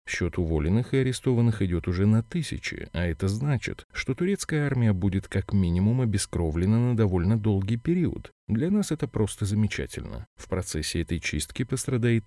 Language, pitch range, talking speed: Russian, 85-115 Hz, 155 wpm